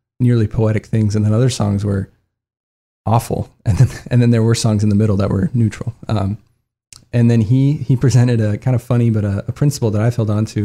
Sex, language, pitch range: male, English, 105-120 Hz